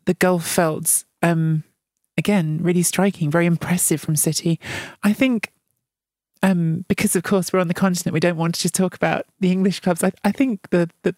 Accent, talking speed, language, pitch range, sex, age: British, 195 wpm, English, 170-185 Hz, male, 30-49